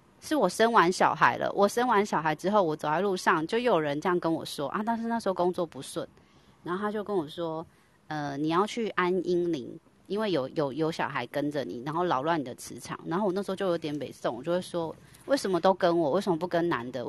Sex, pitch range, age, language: female, 160-205 Hz, 20-39, Chinese